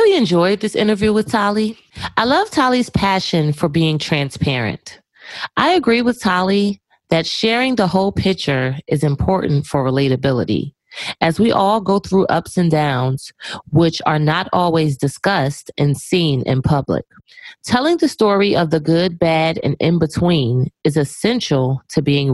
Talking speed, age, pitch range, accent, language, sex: 155 wpm, 30-49, 145-210 Hz, American, English, female